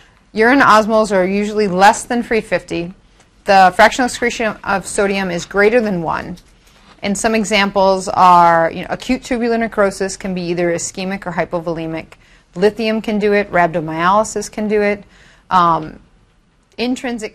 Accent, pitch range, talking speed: American, 180-215 Hz, 140 wpm